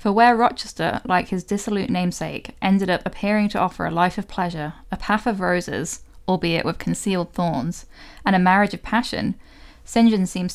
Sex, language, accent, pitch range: female, English, British, 175-205 Hz